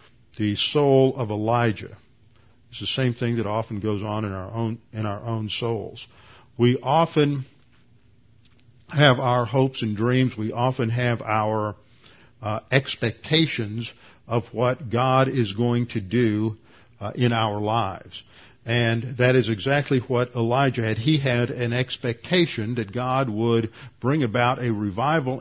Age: 50-69